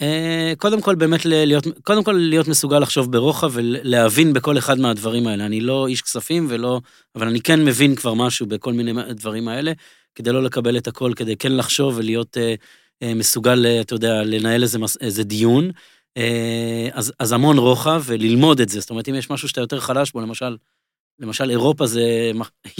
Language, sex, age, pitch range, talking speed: Hebrew, male, 30-49, 115-145 Hz, 190 wpm